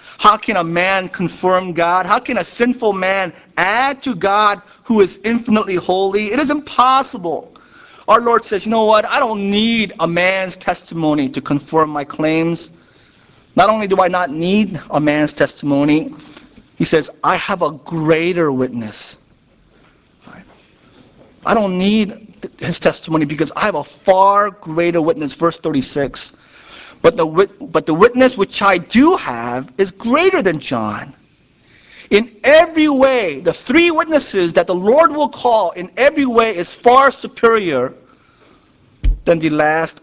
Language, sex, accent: English, male, American